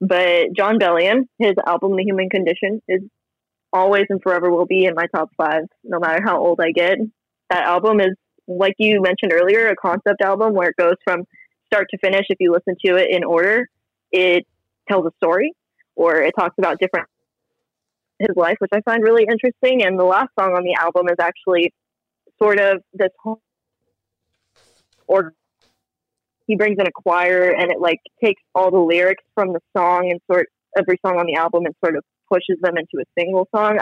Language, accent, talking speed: English, American, 195 wpm